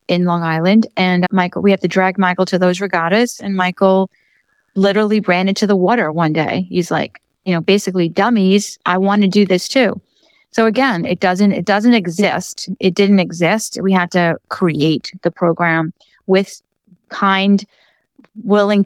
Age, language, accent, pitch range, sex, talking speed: 30-49, English, American, 170-205 Hz, female, 170 wpm